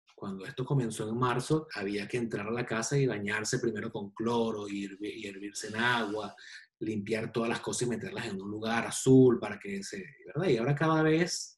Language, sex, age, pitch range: Spanish, male, 30-49, 110-155 Hz